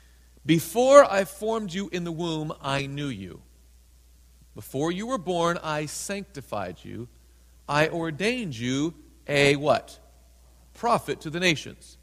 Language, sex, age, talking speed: English, male, 40-59, 130 wpm